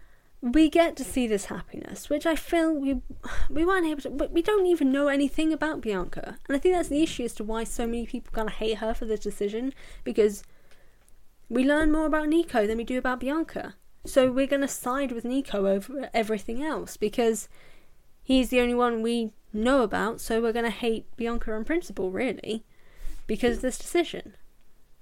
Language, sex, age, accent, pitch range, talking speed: English, female, 10-29, British, 205-270 Hz, 190 wpm